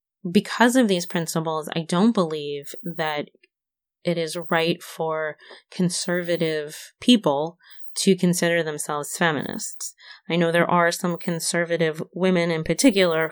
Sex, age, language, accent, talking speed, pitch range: female, 30-49, English, American, 120 wpm, 160-195 Hz